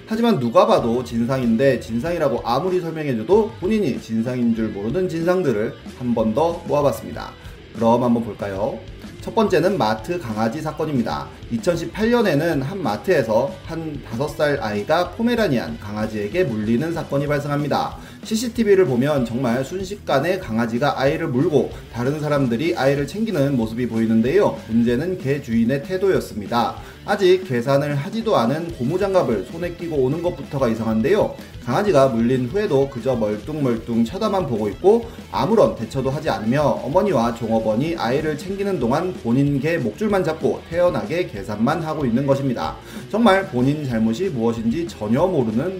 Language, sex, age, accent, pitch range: Korean, male, 30-49, native, 115-170 Hz